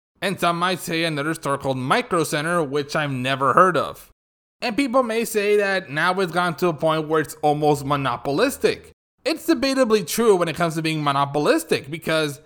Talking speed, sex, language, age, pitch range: 190 wpm, male, English, 20-39, 150-195 Hz